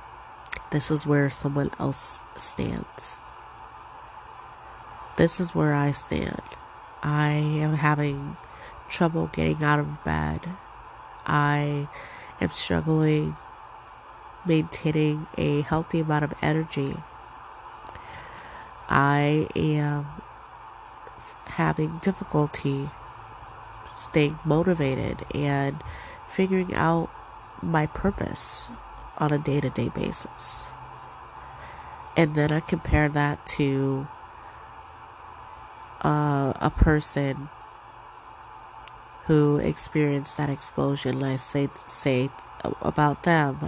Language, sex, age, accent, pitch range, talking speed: English, female, 30-49, American, 135-150 Hz, 85 wpm